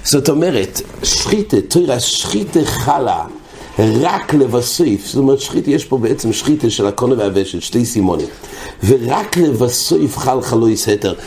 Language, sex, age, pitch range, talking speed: English, male, 60-79, 105-145 Hz, 135 wpm